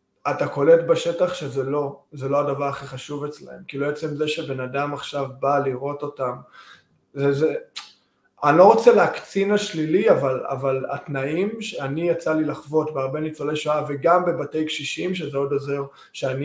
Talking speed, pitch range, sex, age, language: 160 wpm, 145-180 Hz, male, 20-39, Hebrew